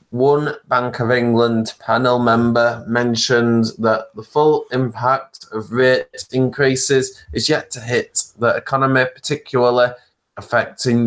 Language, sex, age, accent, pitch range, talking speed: English, male, 20-39, British, 115-135 Hz, 120 wpm